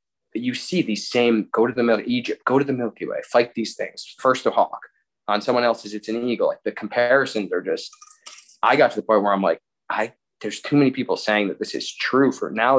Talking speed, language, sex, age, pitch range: 245 wpm, English, male, 20-39, 105-130 Hz